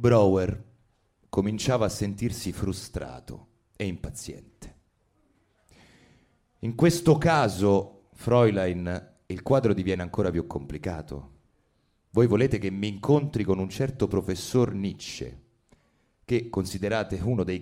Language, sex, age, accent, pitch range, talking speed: Italian, male, 30-49, native, 80-120 Hz, 105 wpm